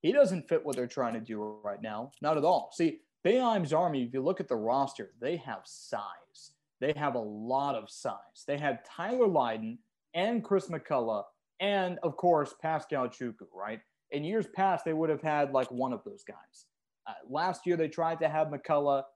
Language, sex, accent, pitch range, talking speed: English, male, American, 135-175 Hz, 200 wpm